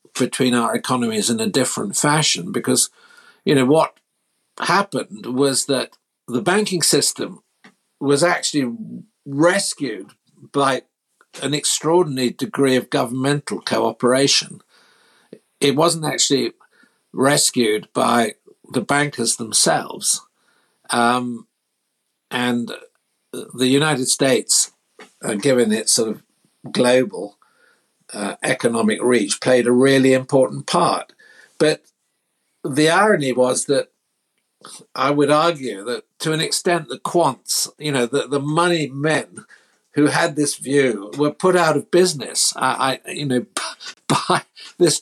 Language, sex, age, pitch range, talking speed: English, male, 60-79, 130-170 Hz, 120 wpm